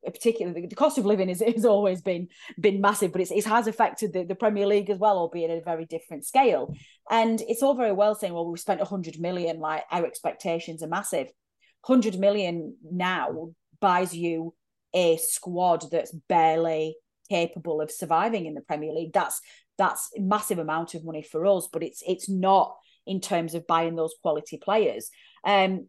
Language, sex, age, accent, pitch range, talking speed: English, female, 30-49, British, 160-205 Hz, 190 wpm